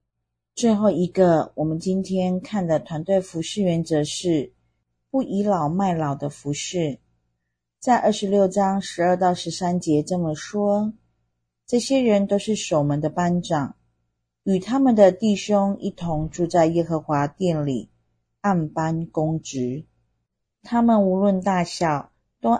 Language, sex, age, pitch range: Chinese, female, 40-59, 150-205 Hz